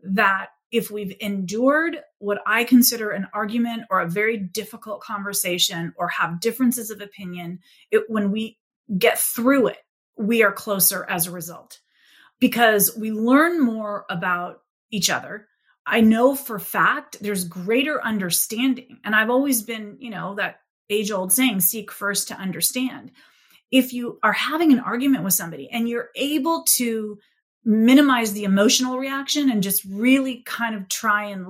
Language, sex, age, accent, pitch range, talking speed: English, female, 30-49, American, 200-255 Hz, 155 wpm